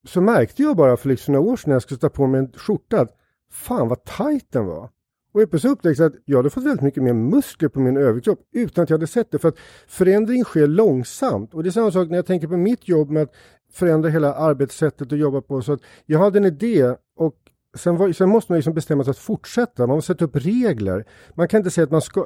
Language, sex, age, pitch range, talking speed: Swedish, male, 50-69, 130-180 Hz, 255 wpm